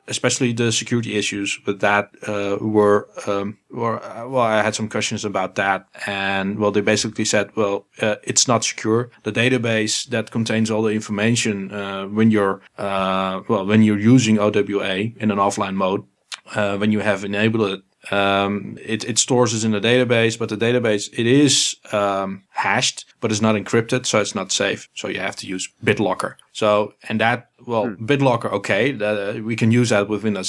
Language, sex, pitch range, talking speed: English, male, 100-115 Hz, 190 wpm